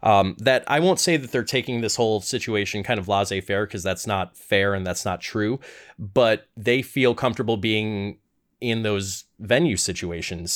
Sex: male